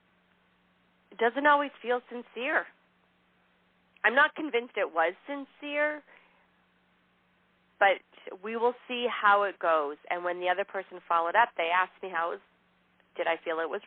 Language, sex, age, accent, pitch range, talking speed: English, female, 40-59, American, 180-255 Hz, 150 wpm